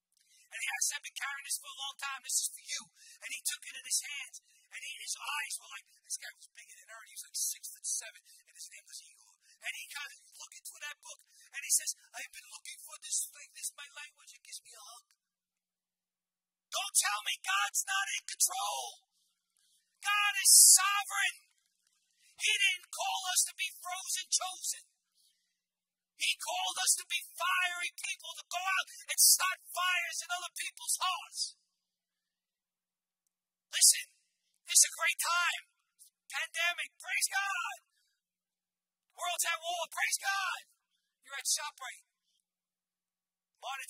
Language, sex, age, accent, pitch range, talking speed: English, male, 40-59, American, 295-385 Hz, 170 wpm